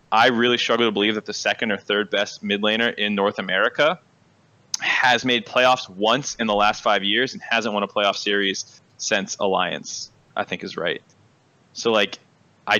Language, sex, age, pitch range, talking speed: English, male, 20-39, 105-135 Hz, 190 wpm